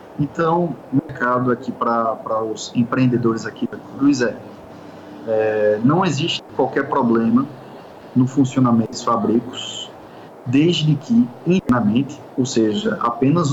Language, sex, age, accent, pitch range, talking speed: Portuguese, male, 20-39, Brazilian, 120-155 Hz, 110 wpm